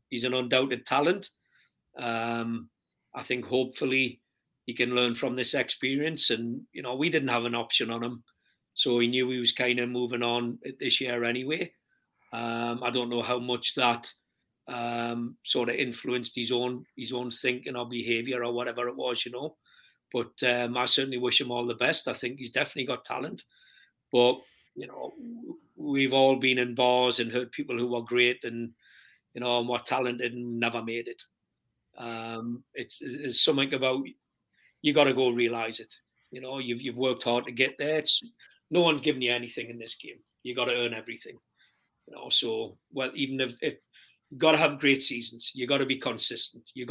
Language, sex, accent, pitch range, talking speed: English, male, British, 120-130 Hz, 190 wpm